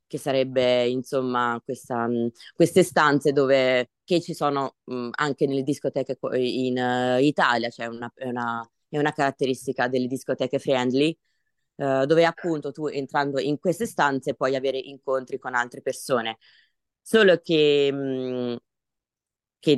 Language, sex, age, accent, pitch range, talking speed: Italian, female, 20-39, native, 130-155 Hz, 135 wpm